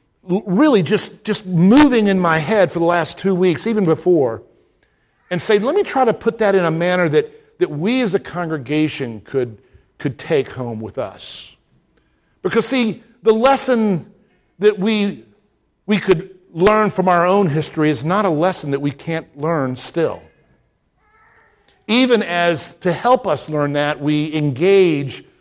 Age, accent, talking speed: 50-69, American, 160 wpm